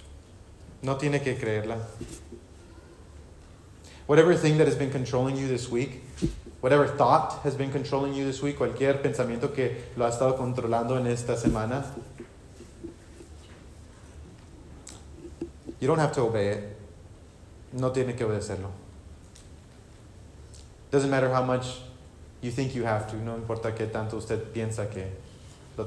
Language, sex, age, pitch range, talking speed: English, male, 30-49, 90-125 Hz, 135 wpm